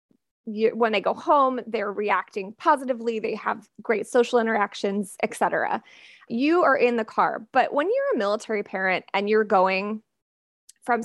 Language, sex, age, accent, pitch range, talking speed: English, female, 20-39, American, 215-285 Hz, 155 wpm